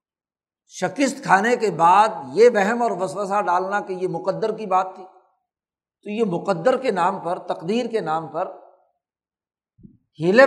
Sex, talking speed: male, 150 wpm